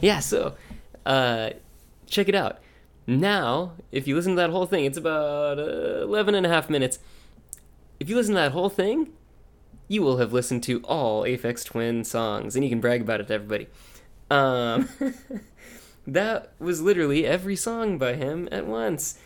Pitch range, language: 125-190 Hz, English